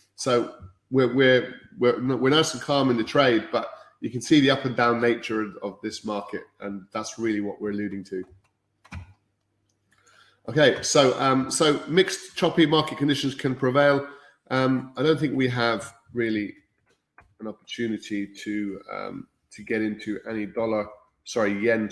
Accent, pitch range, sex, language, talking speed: British, 105-130 Hz, male, English, 160 wpm